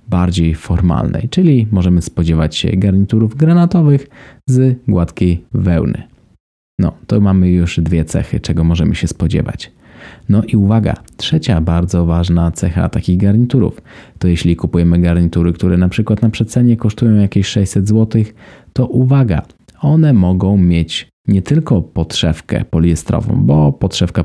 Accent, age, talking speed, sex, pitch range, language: native, 20-39, 135 wpm, male, 85-110 Hz, Polish